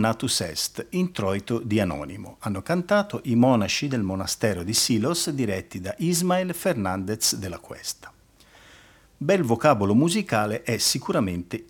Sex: male